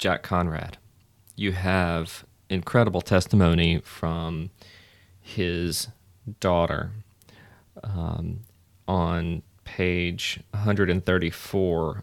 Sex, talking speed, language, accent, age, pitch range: male, 65 wpm, English, American, 30-49, 85-105 Hz